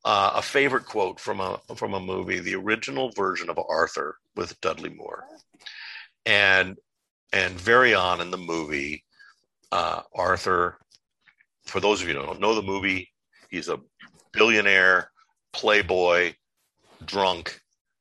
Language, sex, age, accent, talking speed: English, male, 50-69, American, 135 wpm